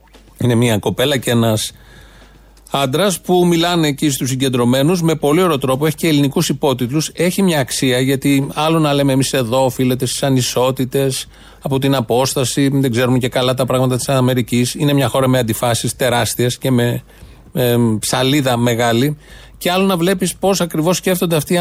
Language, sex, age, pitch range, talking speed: Greek, male, 40-59, 125-160 Hz, 170 wpm